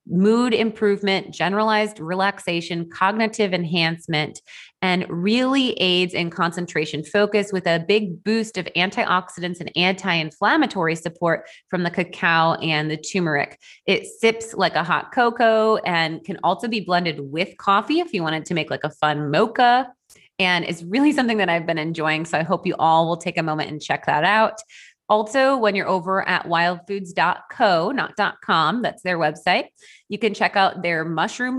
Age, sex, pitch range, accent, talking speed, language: 30-49, female, 165-210 Hz, American, 165 wpm, English